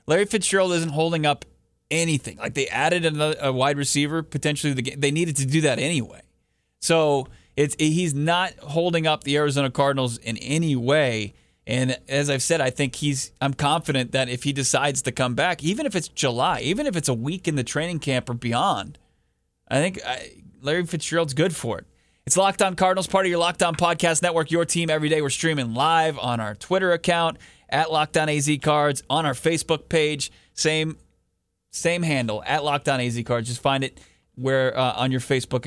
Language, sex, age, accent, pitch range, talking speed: English, male, 30-49, American, 130-165 Hz, 195 wpm